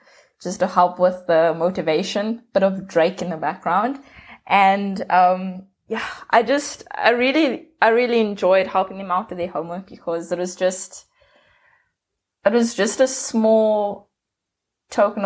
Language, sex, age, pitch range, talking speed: English, female, 20-39, 175-205 Hz, 150 wpm